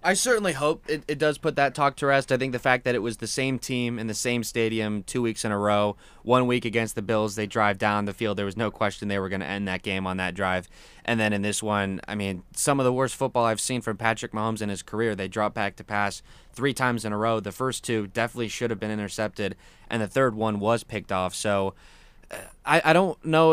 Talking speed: 270 wpm